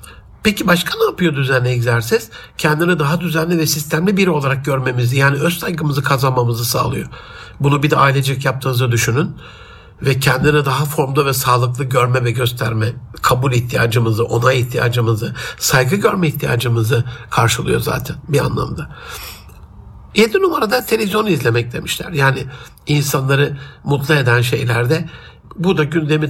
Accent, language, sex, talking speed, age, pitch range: native, Turkish, male, 130 wpm, 60-79, 125-160 Hz